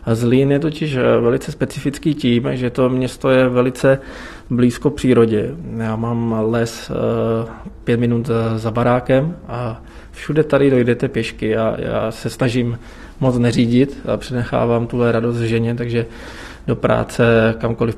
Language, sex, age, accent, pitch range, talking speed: Czech, male, 20-39, native, 115-125 Hz, 135 wpm